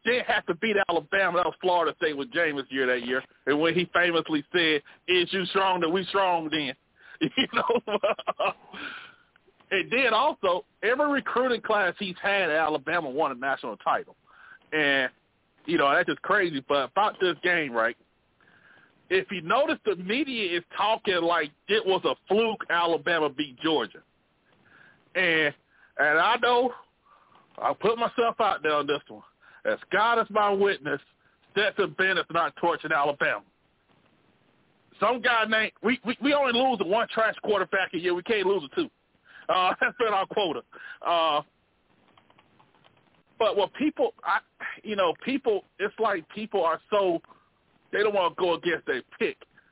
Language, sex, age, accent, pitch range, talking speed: English, male, 40-59, American, 170-250 Hz, 165 wpm